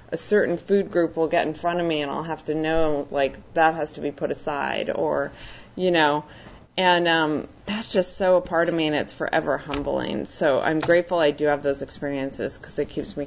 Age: 30-49